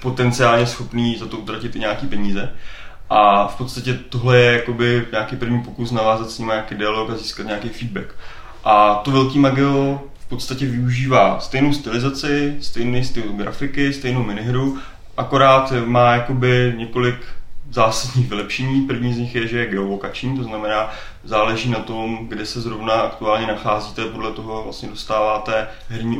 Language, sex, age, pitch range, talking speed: Czech, male, 20-39, 105-120 Hz, 155 wpm